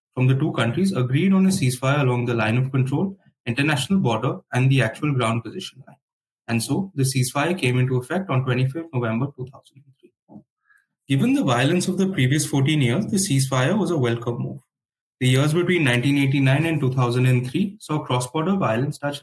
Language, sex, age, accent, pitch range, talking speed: English, male, 20-39, Indian, 125-150 Hz, 175 wpm